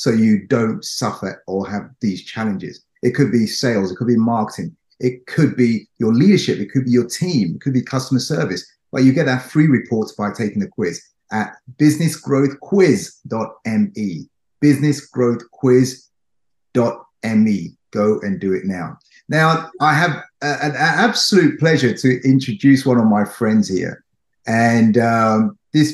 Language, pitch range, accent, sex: English, 115-155 Hz, British, male